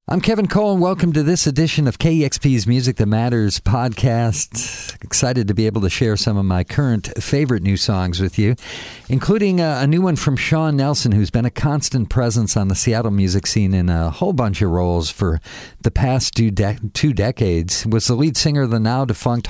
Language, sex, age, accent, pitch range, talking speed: English, male, 50-69, American, 100-130 Hz, 205 wpm